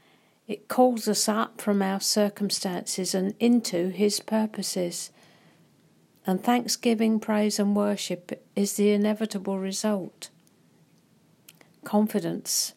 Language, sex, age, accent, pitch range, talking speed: English, female, 50-69, British, 185-215 Hz, 100 wpm